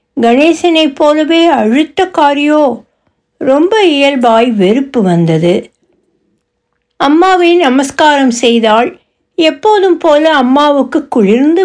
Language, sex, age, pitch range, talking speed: Tamil, female, 60-79, 220-315 Hz, 75 wpm